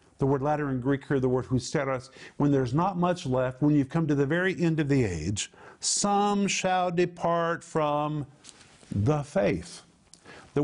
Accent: American